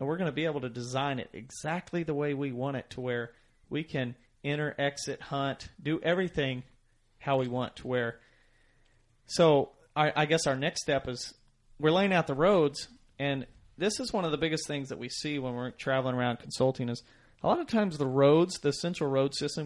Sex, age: male, 40-59